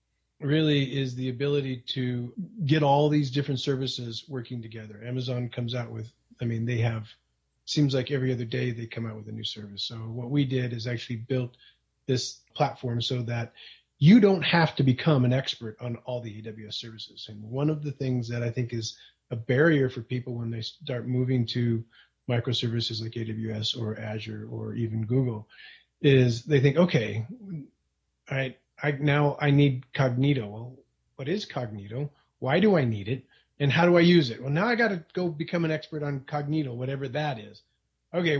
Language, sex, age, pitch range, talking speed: English, male, 30-49, 120-155 Hz, 190 wpm